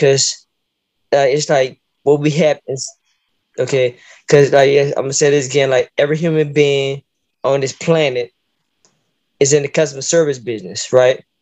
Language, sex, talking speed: English, male, 160 wpm